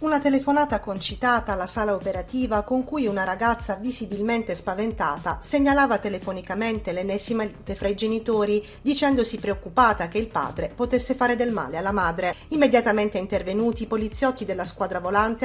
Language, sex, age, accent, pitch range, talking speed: Italian, female, 40-59, native, 195-250 Hz, 145 wpm